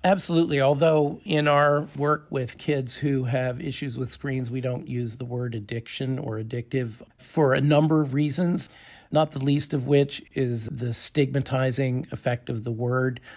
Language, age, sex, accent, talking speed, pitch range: English, 50-69, male, American, 165 wpm, 120-145 Hz